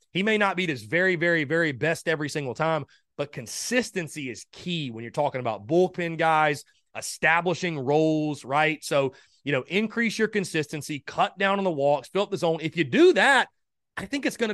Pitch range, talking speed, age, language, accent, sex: 145-190 Hz, 200 wpm, 30-49, English, American, male